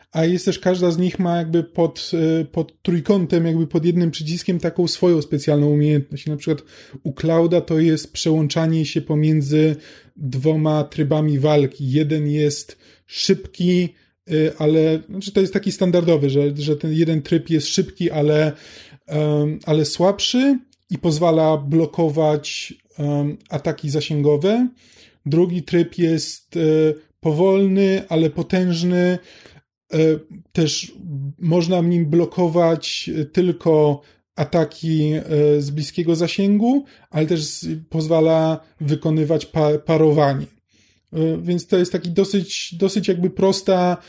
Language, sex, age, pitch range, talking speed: Polish, male, 20-39, 155-175 Hz, 115 wpm